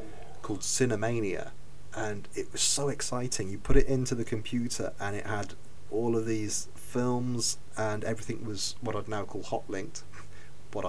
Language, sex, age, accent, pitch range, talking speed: English, male, 30-49, British, 100-120 Hz, 160 wpm